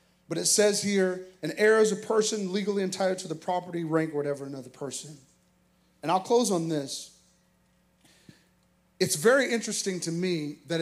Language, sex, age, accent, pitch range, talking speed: English, male, 30-49, American, 150-180 Hz, 165 wpm